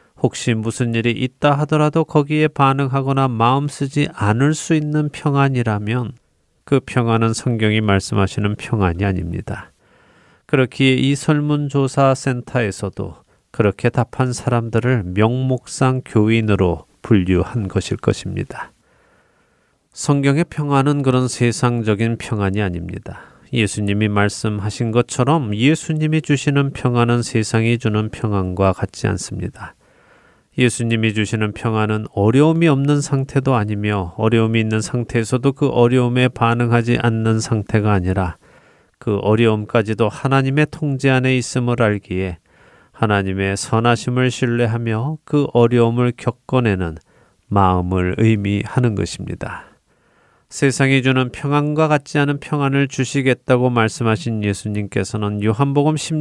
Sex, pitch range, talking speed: male, 105-135 Hz, 95 wpm